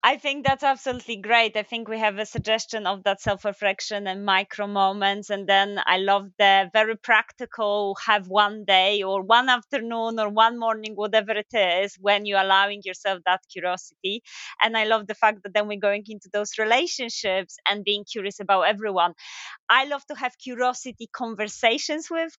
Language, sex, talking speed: English, female, 175 wpm